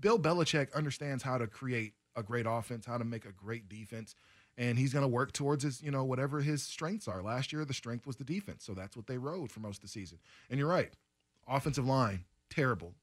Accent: American